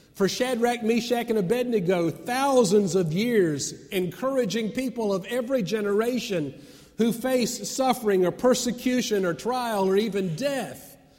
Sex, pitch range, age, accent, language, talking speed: male, 140-220 Hz, 50-69, American, English, 125 wpm